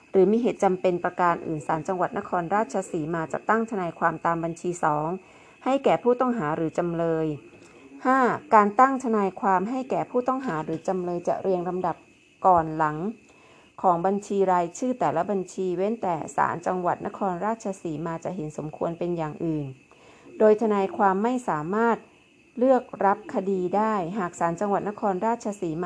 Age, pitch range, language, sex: 30-49, 170-205 Hz, Thai, female